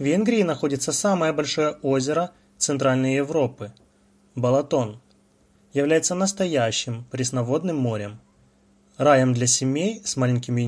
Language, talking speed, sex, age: Russian, 100 wpm, male, 20-39